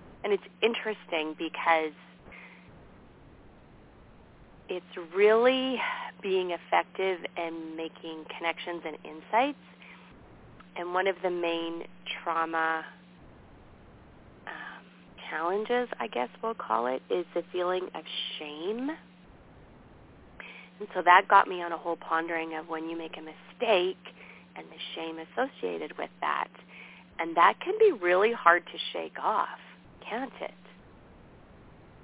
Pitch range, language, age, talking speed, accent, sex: 160-205 Hz, English, 30-49, 115 wpm, American, female